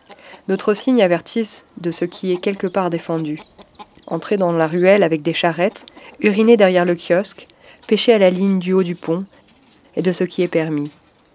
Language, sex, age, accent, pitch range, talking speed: French, female, 30-49, French, 165-200 Hz, 185 wpm